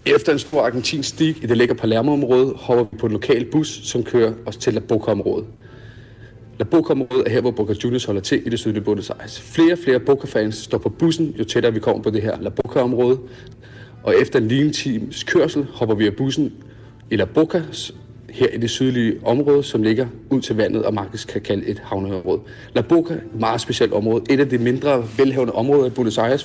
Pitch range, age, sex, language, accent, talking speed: 115-140 Hz, 40-59, male, Danish, native, 210 wpm